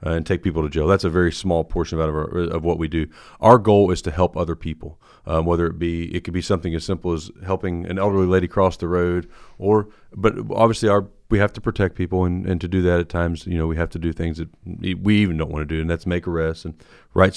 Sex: male